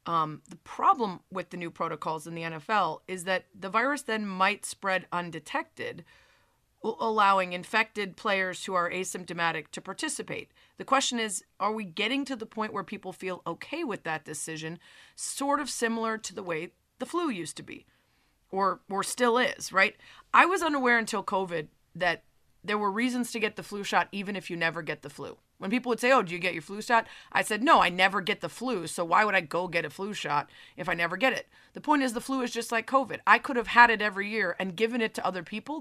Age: 30-49